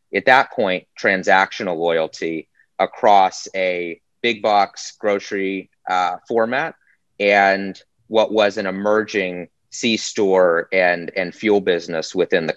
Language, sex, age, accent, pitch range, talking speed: English, male, 30-49, American, 90-105 Hz, 115 wpm